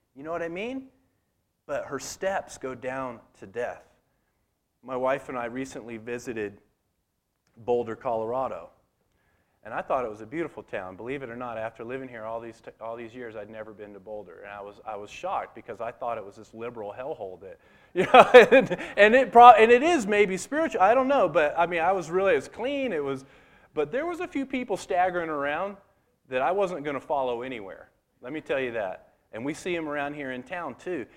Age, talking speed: 40-59, 220 wpm